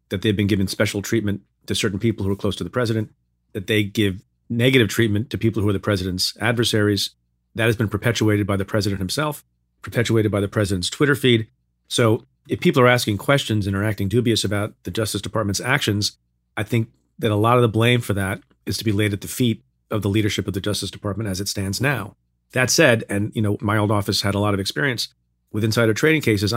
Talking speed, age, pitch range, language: 230 wpm, 40-59, 100-115 Hz, English